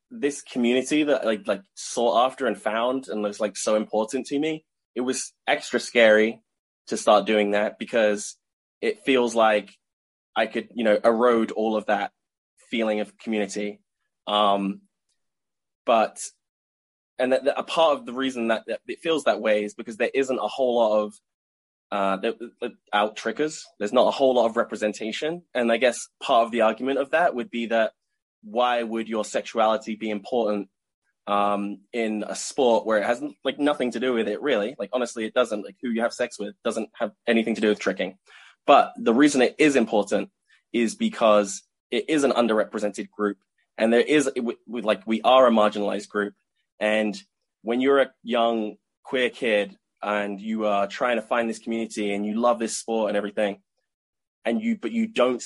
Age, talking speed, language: 10-29, 190 wpm, English